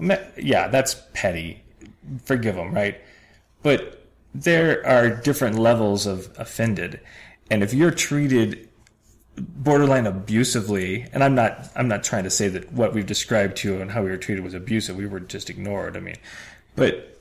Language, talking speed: English, 165 wpm